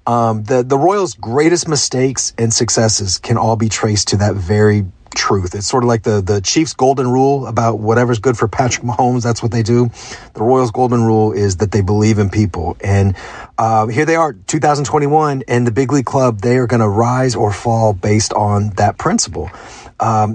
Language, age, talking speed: English, 40-59, 200 wpm